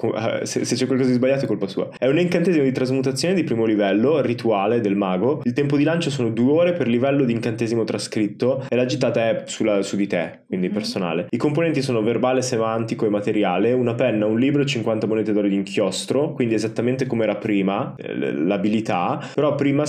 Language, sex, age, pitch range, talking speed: Italian, male, 20-39, 100-130 Hz, 200 wpm